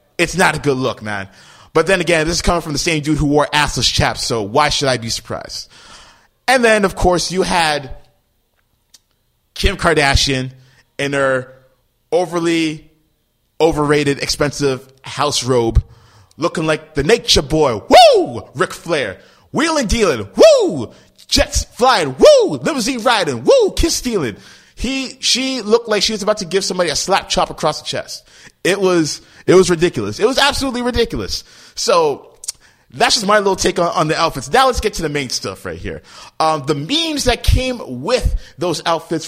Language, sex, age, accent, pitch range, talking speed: English, male, 20-39, American, 135-195 Hz, 170 wpm